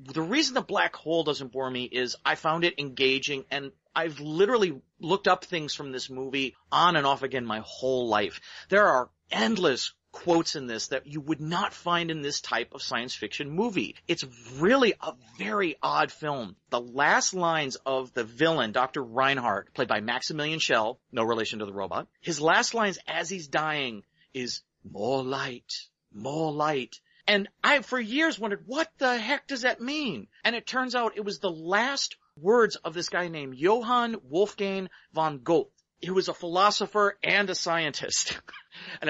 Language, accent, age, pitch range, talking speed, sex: English, American, 40-59, 145-205 Hz, 180 wpm, male